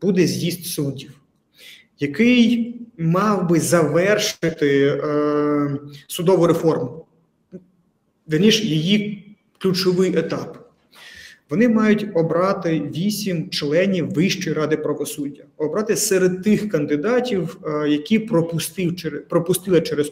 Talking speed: 90 wpm